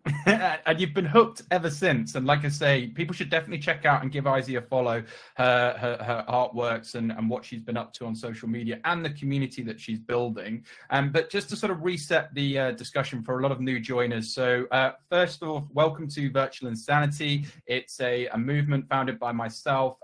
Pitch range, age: 115-140 Hz, 20-39